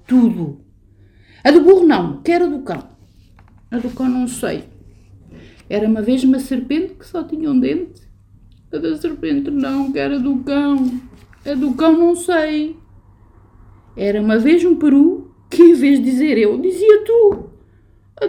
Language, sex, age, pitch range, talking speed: Portuguese, female, 50-69, 185-295 Hz, 165 wpm